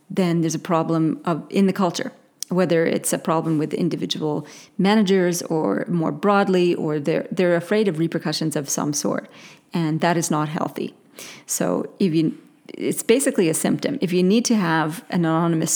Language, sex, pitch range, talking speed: English, female, 160-195 Hz, 165 wpm